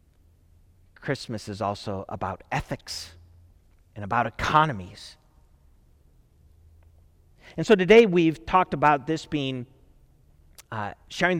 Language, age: English, 40-59